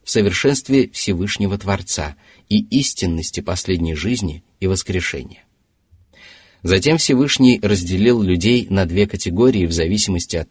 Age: 30-49